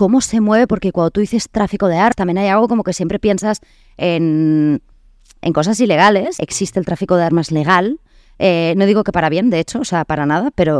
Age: 20-39